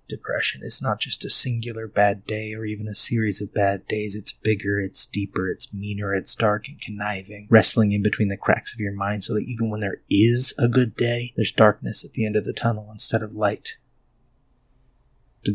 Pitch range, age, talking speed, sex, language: 95-110 Hz, 30-49, 210 wpm, male, English